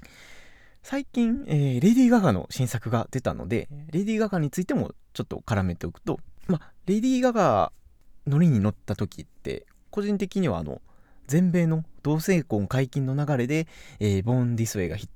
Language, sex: Japanese, male